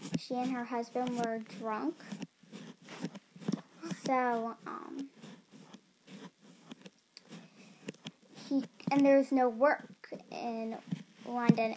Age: 10-29